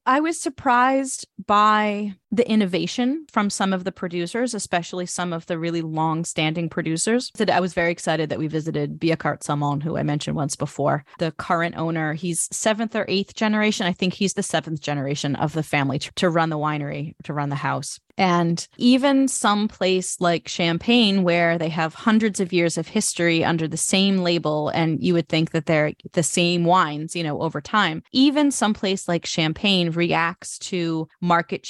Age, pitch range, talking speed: 30-49, 160-210 Hz, 180 wpm